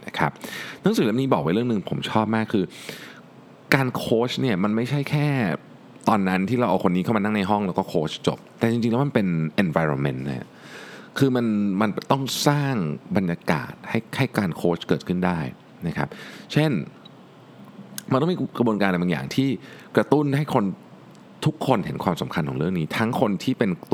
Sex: male